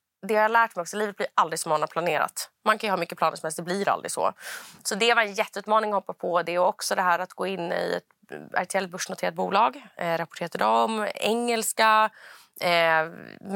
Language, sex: Swedish, female